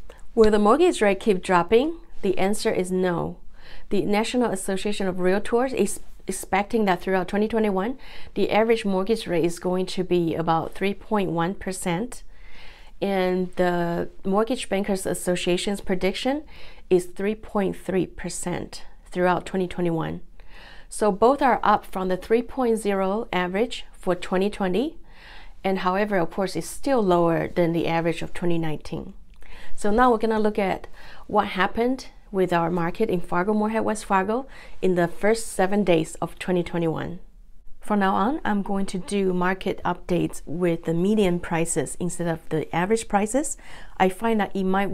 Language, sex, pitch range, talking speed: English, female, 180-215 Hz, 145 wpm